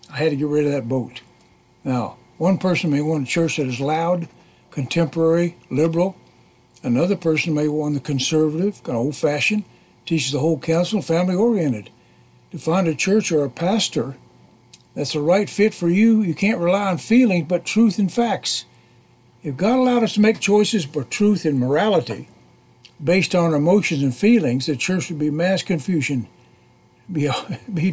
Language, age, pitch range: English, 60-79, 150-190 Hz